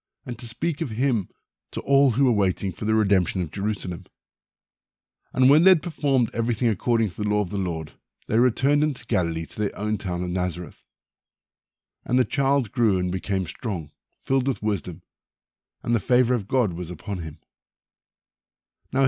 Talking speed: 180 wpm